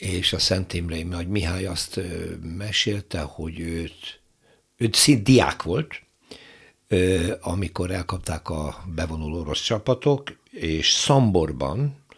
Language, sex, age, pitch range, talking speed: Hungarian, male, 60-79, 80-110 Hz, 110 wpm